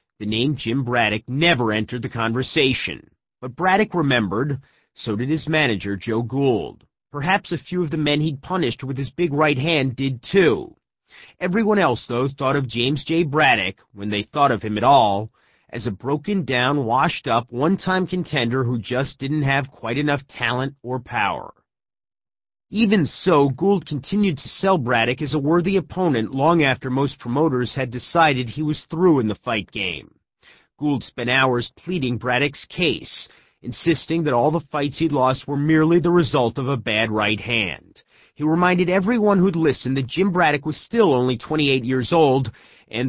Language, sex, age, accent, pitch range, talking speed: English, male, 30-49, American, 120-160 Hz, 170 wpm